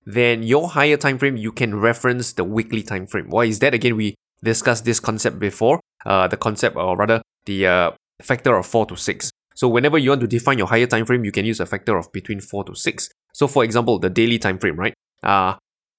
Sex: male